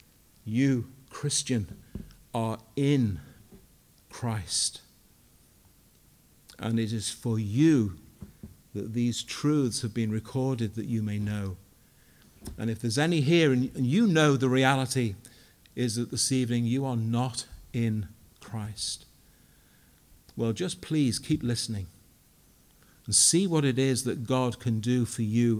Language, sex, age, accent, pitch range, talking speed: English, male, 50-69, British, 115-150 Hz, 130 wpm